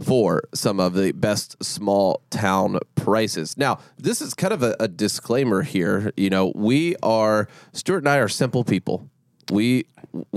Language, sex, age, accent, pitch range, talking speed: English, male, 30-49, American, 100-135 Hz, 160 wpm